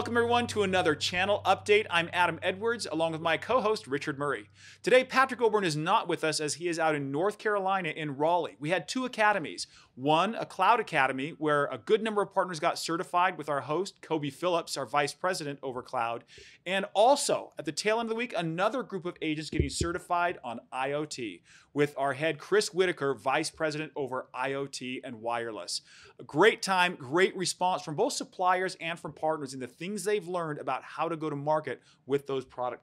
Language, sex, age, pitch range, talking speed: English, male, 30-49, 140-185 Hz, 200 wpm